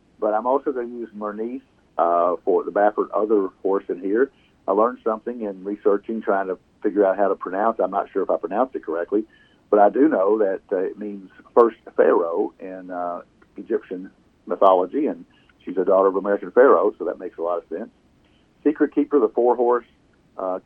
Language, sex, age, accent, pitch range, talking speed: English, male, 50-69, American, 105-145 Hz, 200 wpm